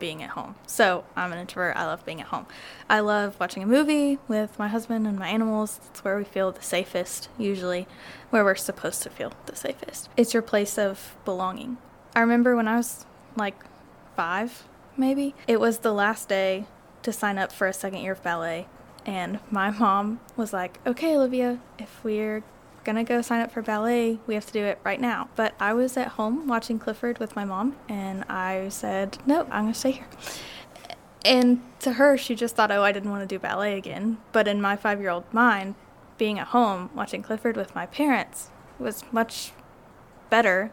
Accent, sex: American, female